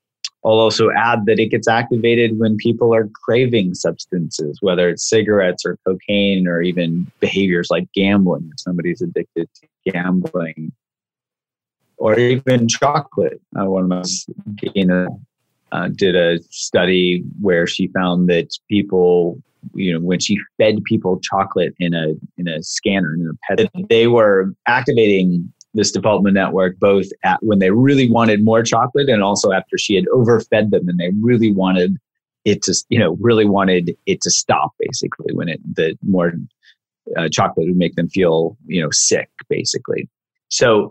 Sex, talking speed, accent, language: male, 160 wpm, American, English